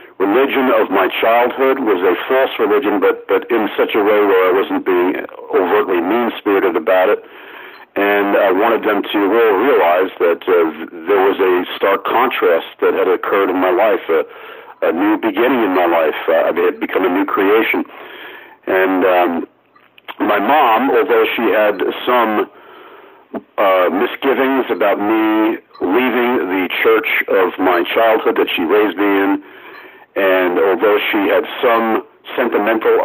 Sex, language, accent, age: male, English, American, 60-79